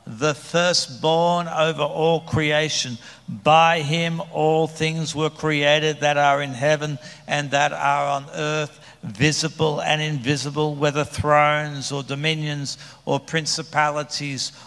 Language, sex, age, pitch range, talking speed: English, male, 60-79, 140-160 Hz, 120 wpm